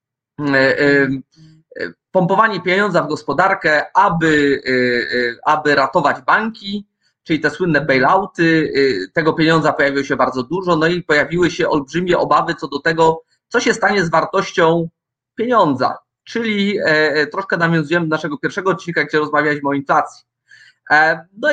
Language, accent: Polish, native